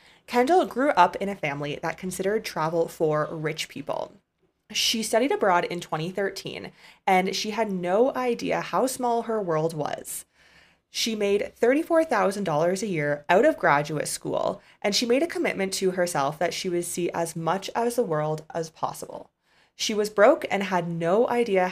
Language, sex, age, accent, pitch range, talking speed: English, female, 20-39, American, 165-220 Hz, 170 wpm